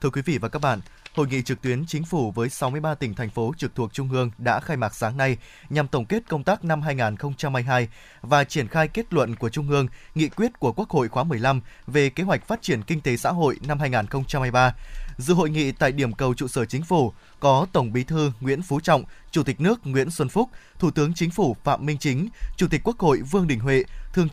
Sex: male